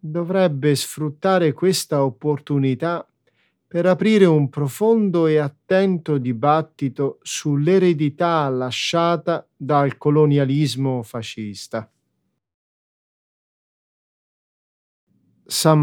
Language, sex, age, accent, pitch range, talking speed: Italian, male, 40-59, native, 130-180 Hz, 65 wpm